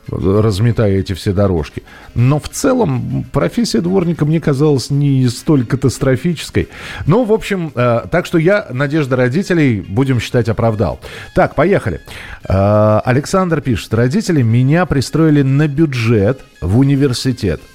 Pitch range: 110-145 Hz